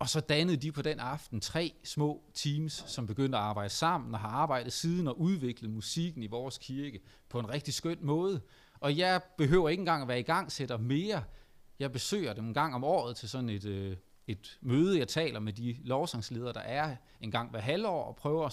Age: 30-49